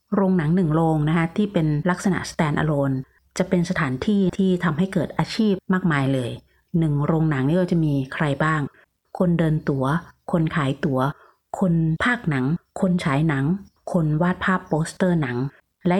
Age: 30-49